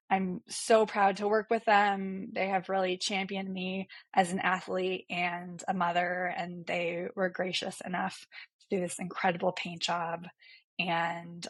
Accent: American